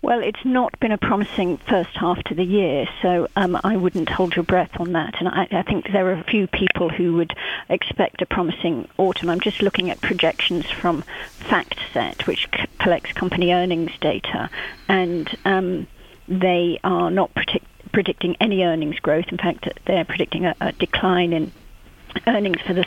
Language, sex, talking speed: English, female, 180 wpm